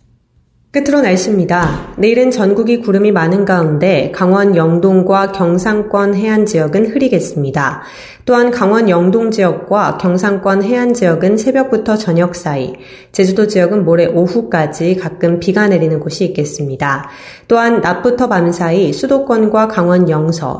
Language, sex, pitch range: Korean, female, 165-220 Hz